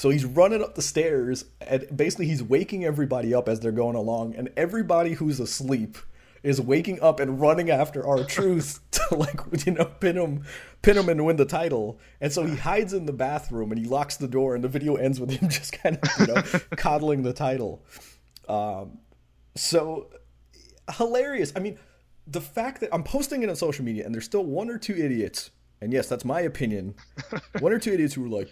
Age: 30-49